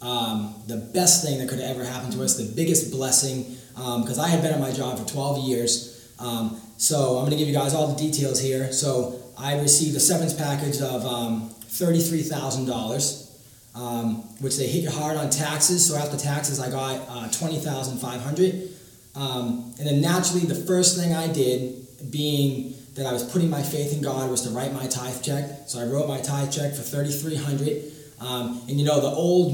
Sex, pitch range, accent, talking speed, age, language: male, 125-150 Hz, American, 195 wpm, 20-39, English